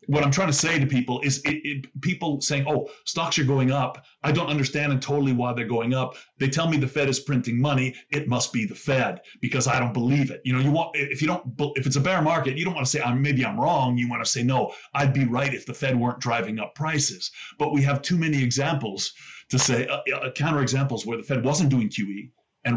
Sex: male